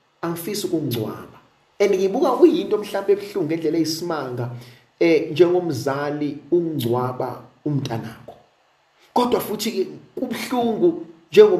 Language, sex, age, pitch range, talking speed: English, male, 50-69, 135-200 Hz, 85 wpm